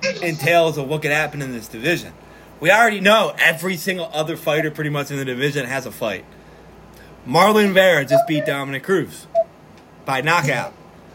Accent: American